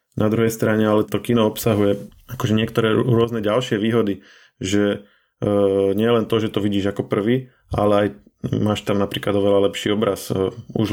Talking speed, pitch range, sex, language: 180 wpm, 100-110 Hz, male, Slovak